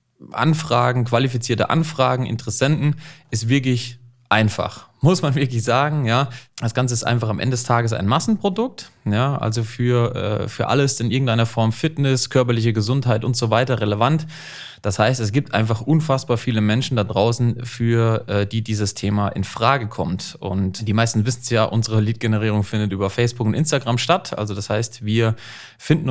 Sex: male